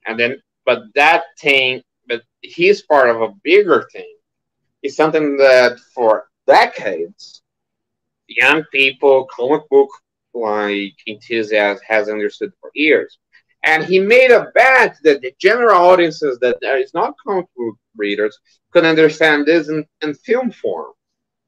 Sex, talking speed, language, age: male, 140 wpm, English, 30-49